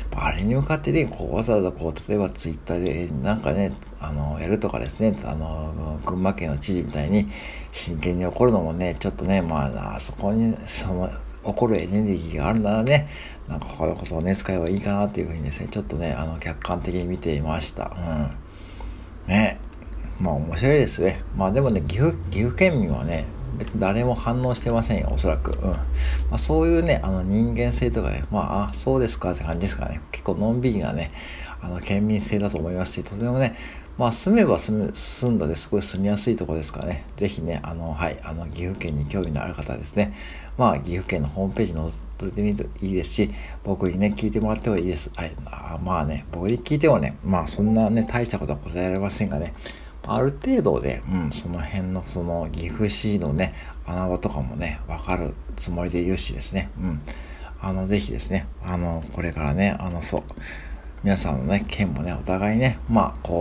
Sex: male